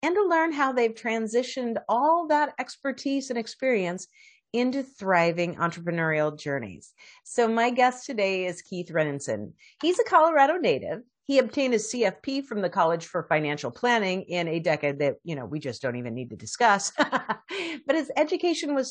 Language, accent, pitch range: English, American, 185-275 Hz